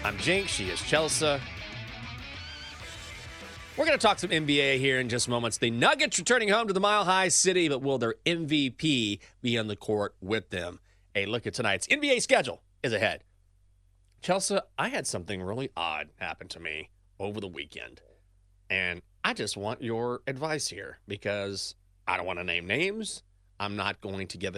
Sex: male